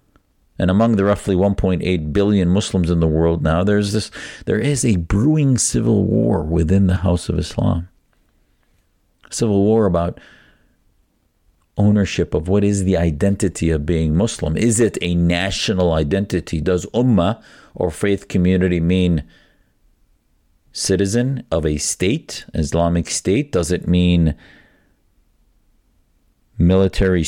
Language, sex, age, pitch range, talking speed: English, male, 50-69, 85-100 Hz, 130 wpm